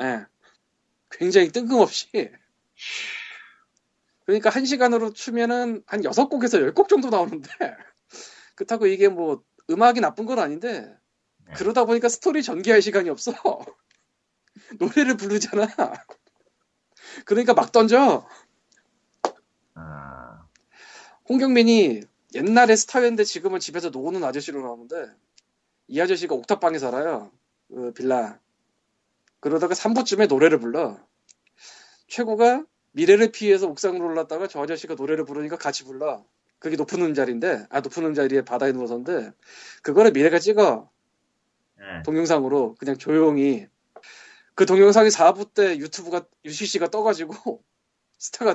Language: Korean